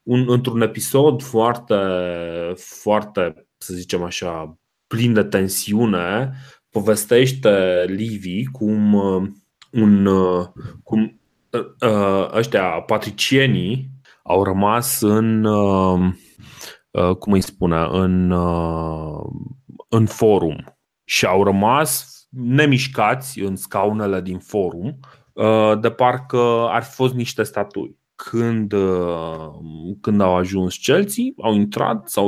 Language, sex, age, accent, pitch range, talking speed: Romanian, male, 30-49, native, 90-120 Hz, 85 wpm